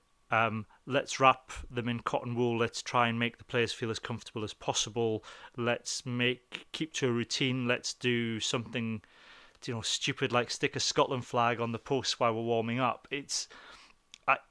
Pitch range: 115-135 Hz